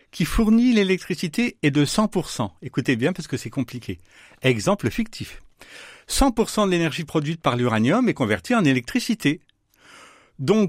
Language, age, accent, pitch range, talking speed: French, 60-79, French, 150-220 Hz, 140 wpm